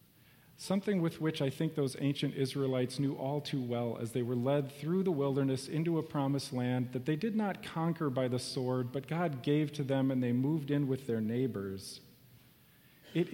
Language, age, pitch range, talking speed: English, 40-59, 135-170 Hz, 200 wpm